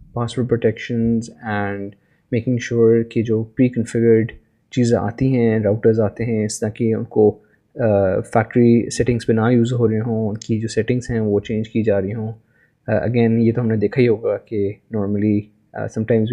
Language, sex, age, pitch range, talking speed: Urdu, male, 20-39, 105-120 Hz, 180 wpm